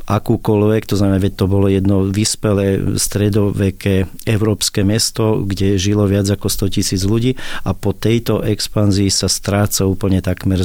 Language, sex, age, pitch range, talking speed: Slovak, male, 40-59, 100-110 Hz, 145 wpm